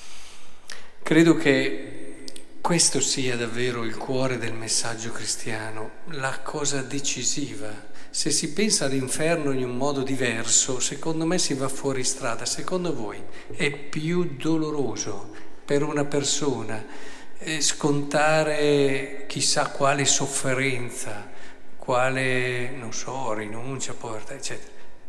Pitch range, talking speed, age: 120-145 Hz, 110 wpm, 50-69